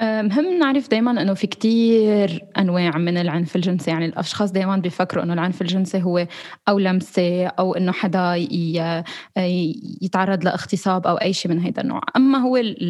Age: 20-39